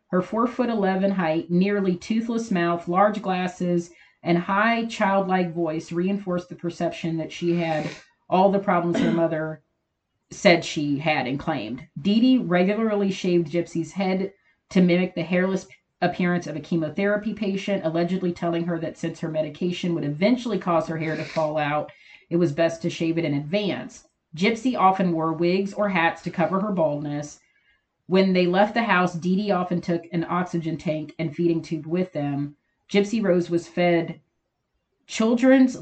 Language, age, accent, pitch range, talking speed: English, 40-59, American, 160-195 Hz, 170 wpm